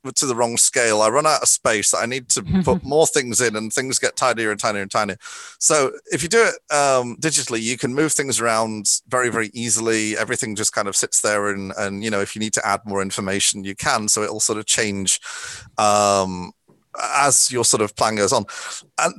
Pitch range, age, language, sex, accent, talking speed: 105-135 Hz, 30-49, English, male, British, 225 wpm